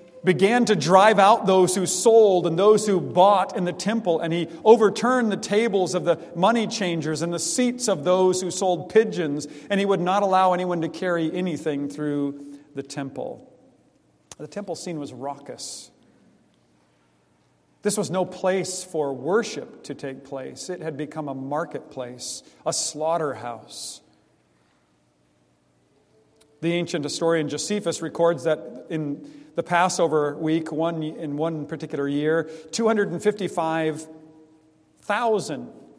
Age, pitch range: 50-69, 135-185 Hz